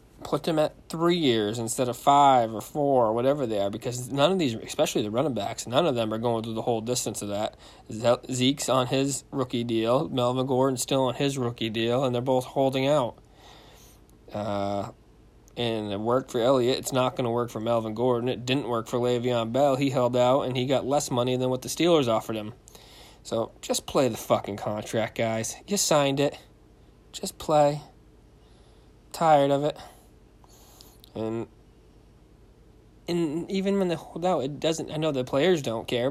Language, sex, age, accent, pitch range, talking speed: English, male, 20-39, American, 115-145 Hz, 190 wpm